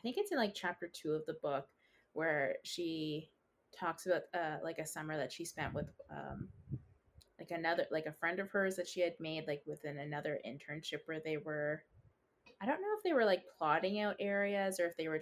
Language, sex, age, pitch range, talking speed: English, female, 20-39, 150-180 Hz, 215 wpm